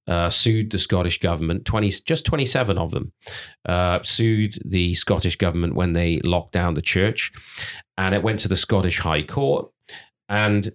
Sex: male